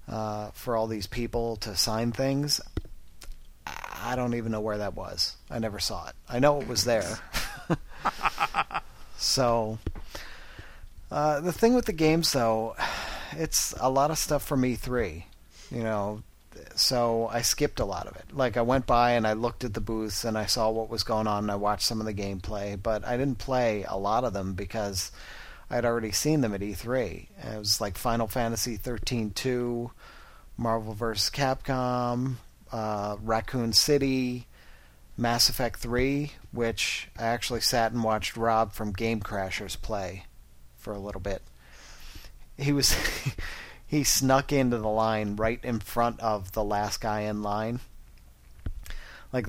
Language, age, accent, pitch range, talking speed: English, 40-59, American, 105-120 Hz, 165 wpm